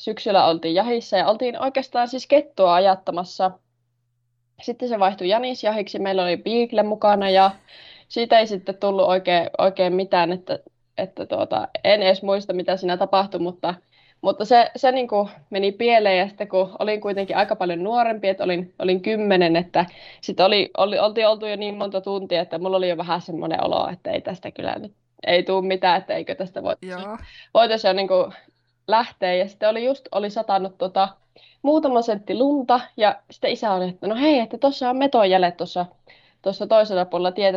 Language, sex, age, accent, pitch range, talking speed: Finnish, female, 20-39, native, 185-225 Hz, 175 wpm